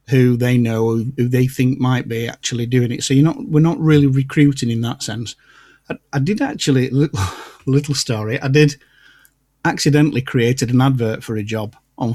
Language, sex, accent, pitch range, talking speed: English, male, British, 115-140 Hz, 190 wpm